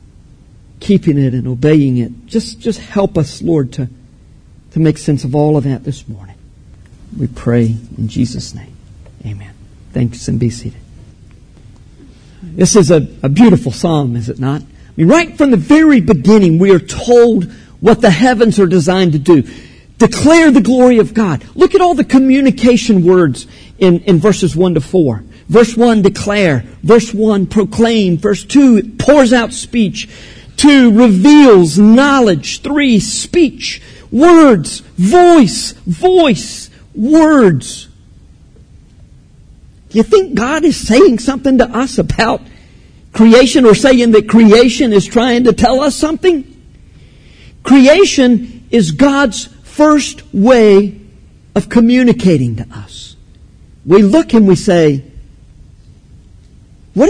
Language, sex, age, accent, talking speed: English, male, 50-69, American, 135 wpm